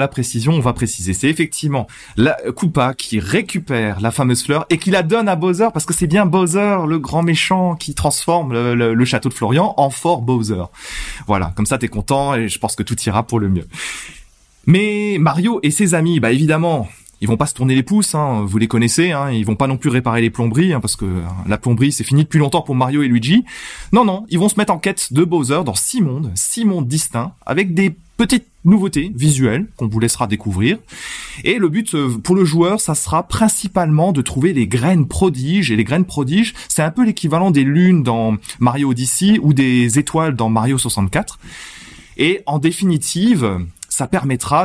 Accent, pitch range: French, 115-175 Hz